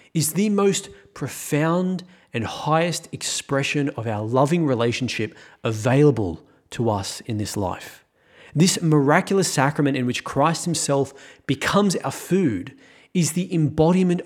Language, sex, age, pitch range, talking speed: English, male, 30-49, 130-165 Hz, 125 wpm